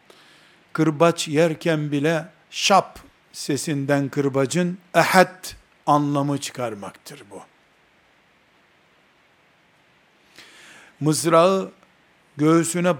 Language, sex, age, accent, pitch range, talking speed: Turkish, male, 60-79, native, 145-175 Hz, 55 wpm